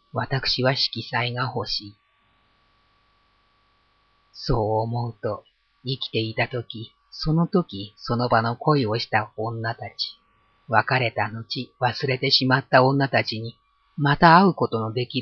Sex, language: female, Japanese